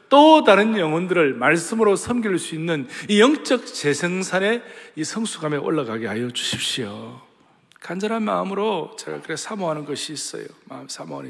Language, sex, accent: Korean, male, native